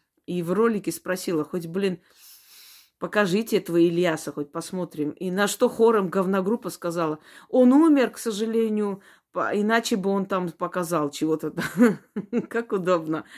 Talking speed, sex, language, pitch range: 130 wpm, female, Russian, 175-230 Hz